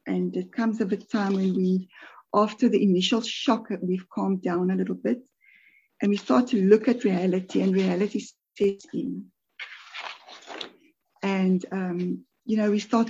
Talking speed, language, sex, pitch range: 160 wpm, English, female, 185-230 Hz